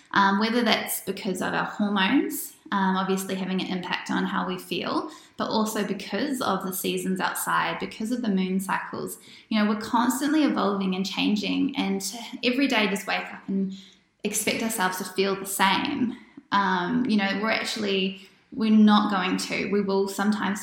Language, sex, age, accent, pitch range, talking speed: English, female, 10-29, Australian, 195-220 Hz, 175 wpm